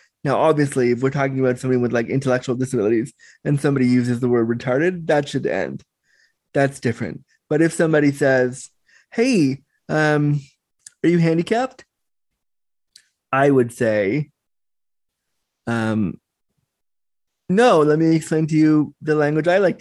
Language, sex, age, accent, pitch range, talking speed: English, male, 20-39, American, 130-160 Hz, 135 wpm